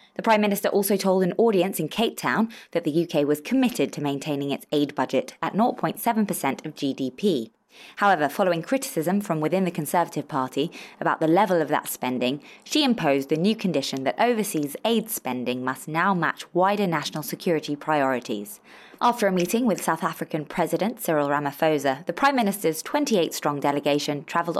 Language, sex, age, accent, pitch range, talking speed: English, female, 20-39, British, 150-205 Hz, 170 wpm